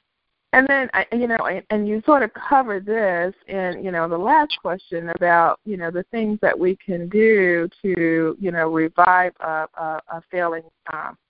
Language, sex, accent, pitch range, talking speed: English, female, American, 170-220 Hz, 175 wpm